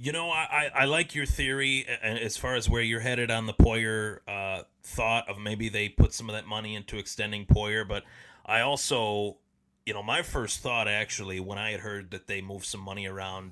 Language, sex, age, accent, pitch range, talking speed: English, male, 30-49, American, 100-115 Hz, 215 wpm